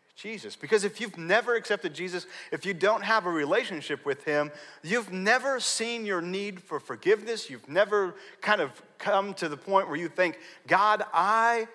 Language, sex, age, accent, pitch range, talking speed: English, male, 40-59, American, 150-220 Hz, 180 wpm